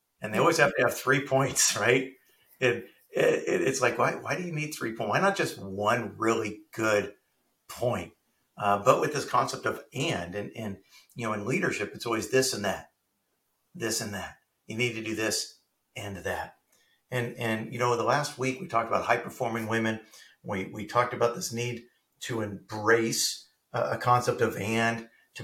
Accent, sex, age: American, male, 50-69